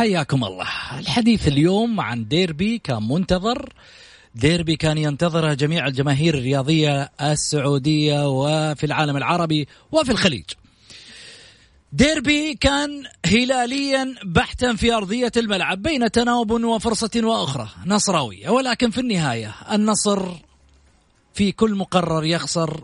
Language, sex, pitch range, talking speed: Arabic, male, 160-240 Hz, 105 wpm